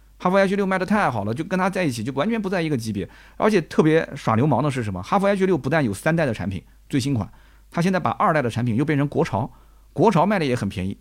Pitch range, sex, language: 110-150 Hz, male, Chinese